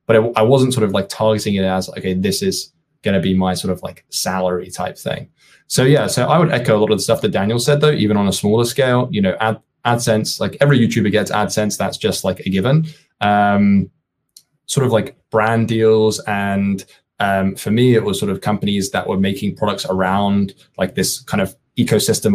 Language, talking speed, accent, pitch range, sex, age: English, 215 wpm, British, 95-120 Hz, male, 20-39